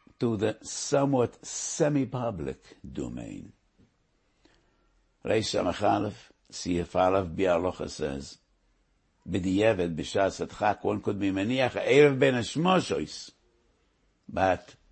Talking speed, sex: 80 wpm, male